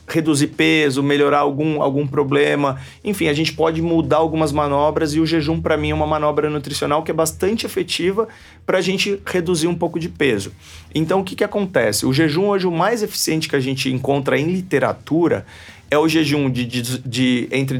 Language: Portuguese